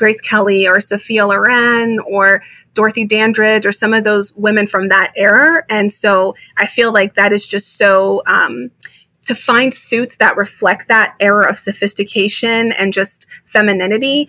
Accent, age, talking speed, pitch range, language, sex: American, 30-49, 160 wpm, 195-215 Hz, English, female